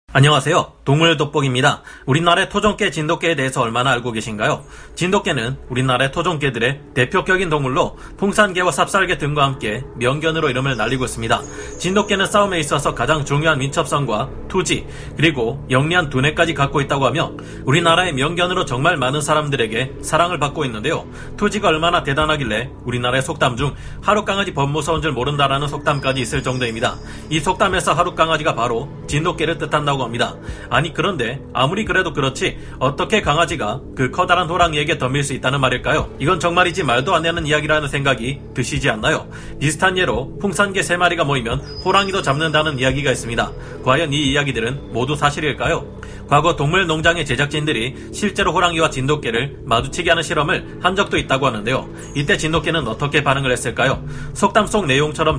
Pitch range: 130-170 Hz